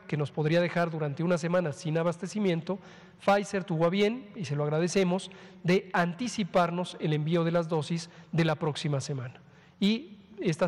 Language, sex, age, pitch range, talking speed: Spanish, male, 40-59, 160-190 Hz, 170 wpm